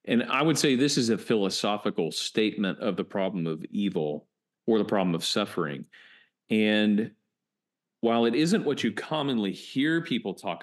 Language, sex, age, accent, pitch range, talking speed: English, male, 40-59, American, 100-130 Hz, 165 wpm